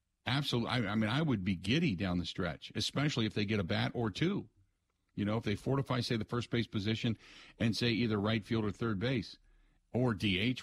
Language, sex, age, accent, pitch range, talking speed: English, male, 50-69, American, 100-125 Hz, 220 wpm